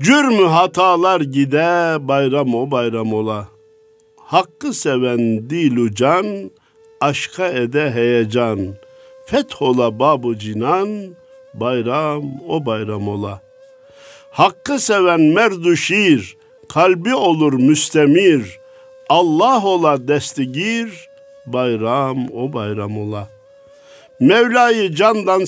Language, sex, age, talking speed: Turkish, male, 50-69, 90 wpm